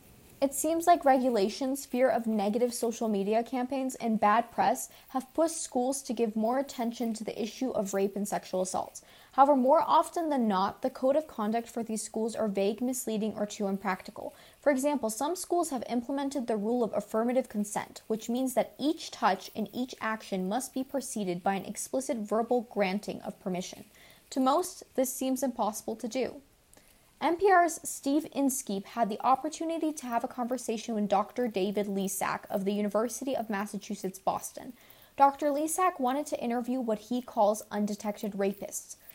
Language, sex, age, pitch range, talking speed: English, female, 20-39, 210-275 Hz, 170 wpm